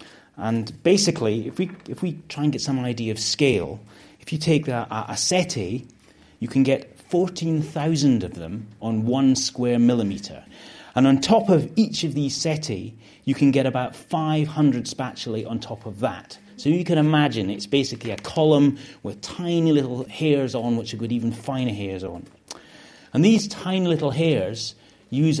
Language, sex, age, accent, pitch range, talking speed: English, male, 30-49, British, 110-150 Hz, 170 wpm